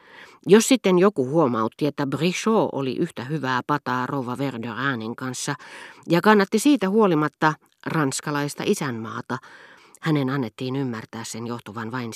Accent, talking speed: native, 125 wpm